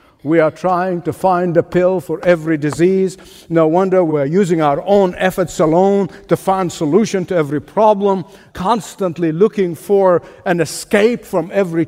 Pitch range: 155-200 Hz